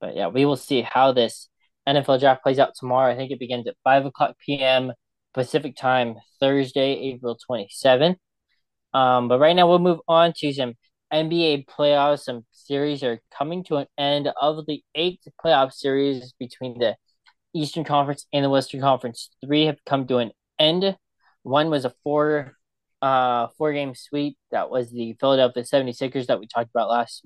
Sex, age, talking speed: male, 20-39, 175 wpm